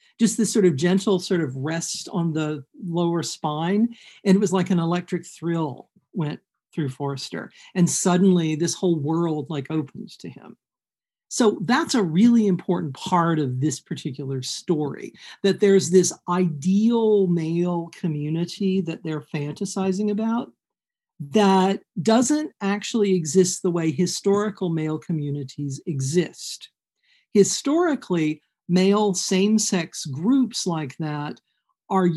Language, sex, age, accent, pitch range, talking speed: English, male, 50-69, American, 165-200 Hz, 125 wpm